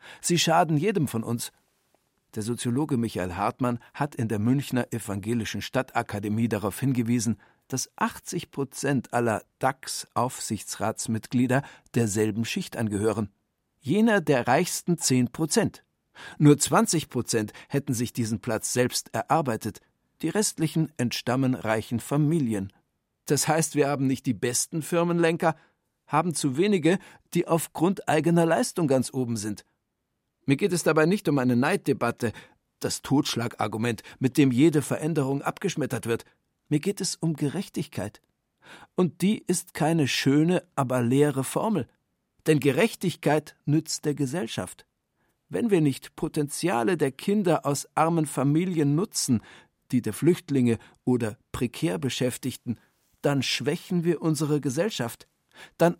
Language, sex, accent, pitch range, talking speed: German, male, German, 120-165 Hz, 125 wpm